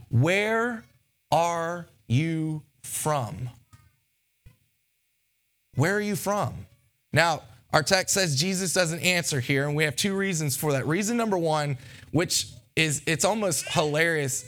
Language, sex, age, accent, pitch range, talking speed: English, male, 20-39, American, 125-160 Hz, 130 wpm